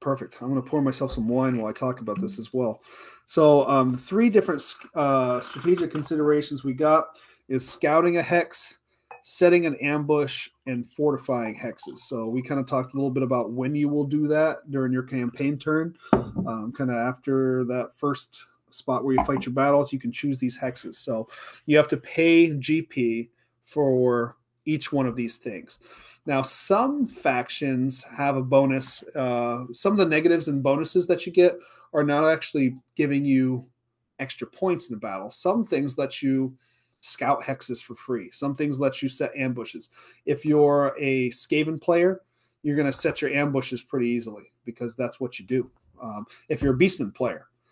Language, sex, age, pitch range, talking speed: English, male, 30-49, 125-150 Hz, 180 wpm